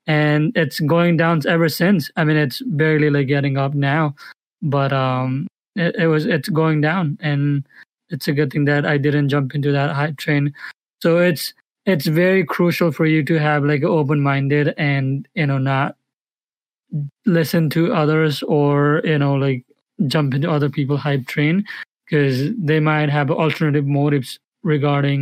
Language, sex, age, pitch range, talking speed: English, male, 20-39, 145-165 Hz, 165 wpm